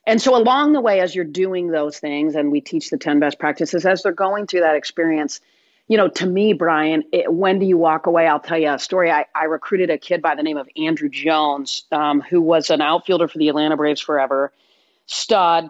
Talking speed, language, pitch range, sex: 230 wpm, English, 150-200 Hz, female